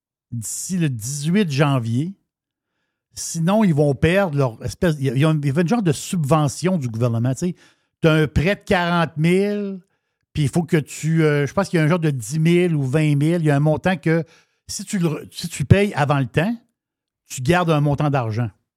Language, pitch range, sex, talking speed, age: French, 130-175 Hz, male, 210 wpm, 60-79